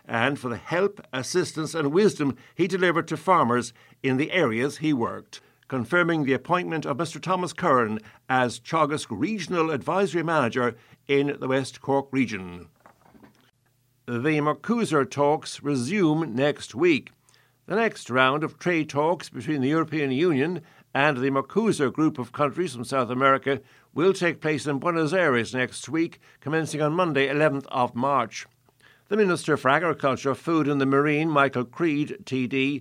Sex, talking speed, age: male, 150 wpm, 60-79